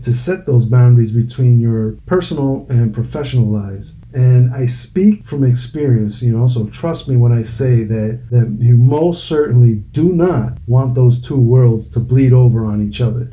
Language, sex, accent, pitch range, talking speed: English, male, American, 120-135 Hz, 180 wpm